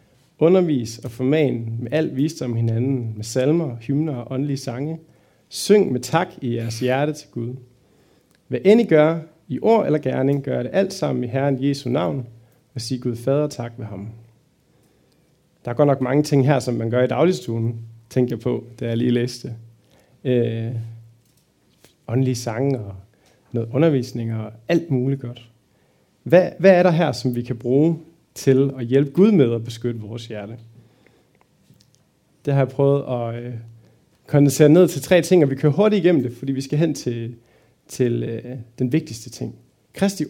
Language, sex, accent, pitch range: Danish, male, native, 120-155 Hz